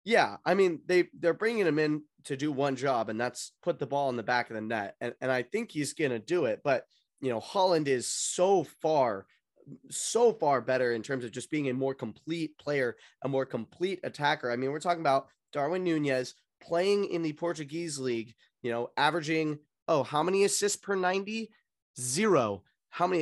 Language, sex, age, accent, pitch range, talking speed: English, male, 20-39, American, 125-165 Hz, 205 wpm